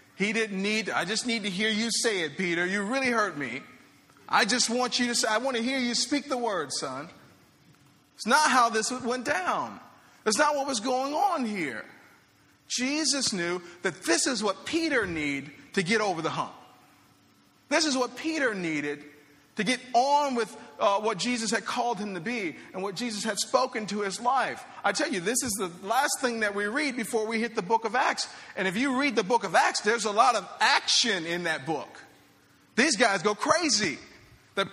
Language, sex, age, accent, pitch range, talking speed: English, male, 40-59, American, 210-275 Hz, 210 wpm